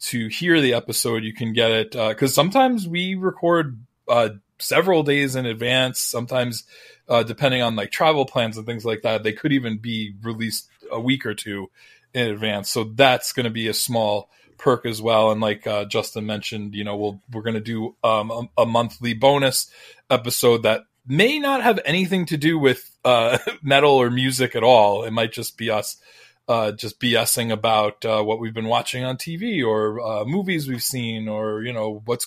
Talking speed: 200 wpm